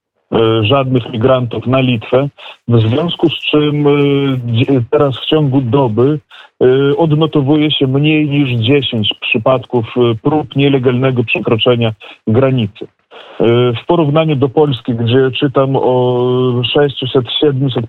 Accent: native